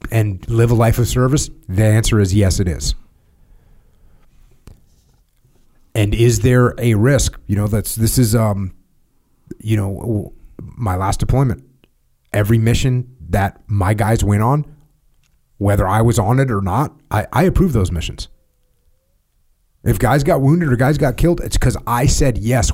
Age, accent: 30-49, American